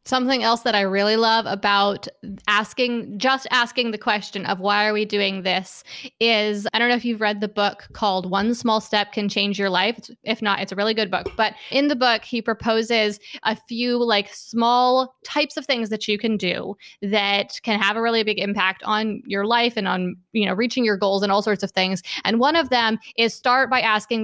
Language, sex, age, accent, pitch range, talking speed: English, female, 20-39, American, 205-240 Hz, 225 wpm